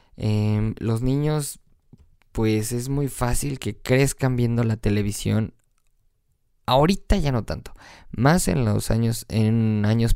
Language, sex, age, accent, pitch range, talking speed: Spanish, male, 20-39, Mexican, 105-125 Hz, 130 wpm